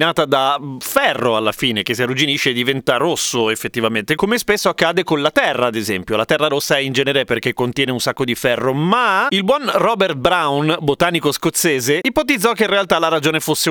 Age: 30-49